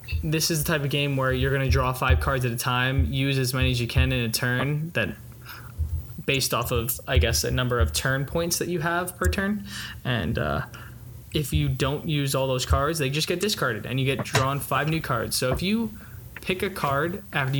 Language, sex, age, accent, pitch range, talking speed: English, male, 20-39, American, 125-155 Hz, 230 wpm